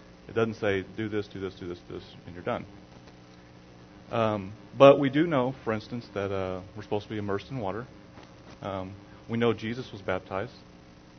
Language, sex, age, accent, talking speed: English, male, 30-49, American, 195 wpm